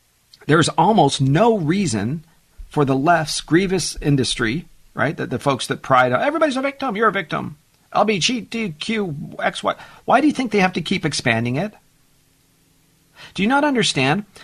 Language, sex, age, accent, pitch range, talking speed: English, male, 50-69, American, 130-190 Hz, 160 wpm